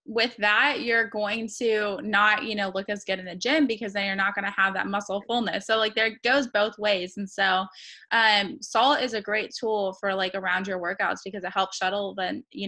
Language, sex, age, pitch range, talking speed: English, female, 20-39, 195-225 Hz, 230 wpm